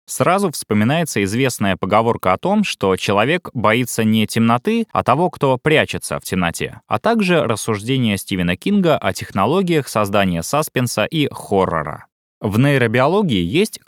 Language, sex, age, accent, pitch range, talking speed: Russian, male, 20-39, native, 105-150 Hz, 135 wpm